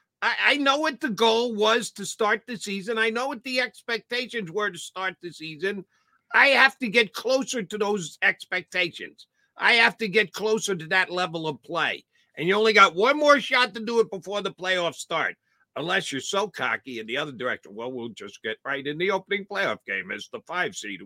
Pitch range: 145-230 Hz